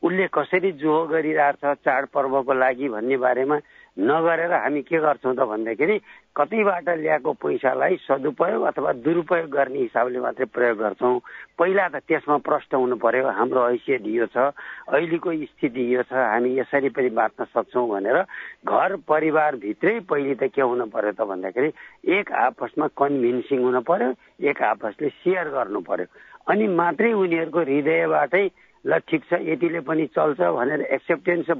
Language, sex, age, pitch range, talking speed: English, male, 60-79, 130-170 Hz, 95 wpm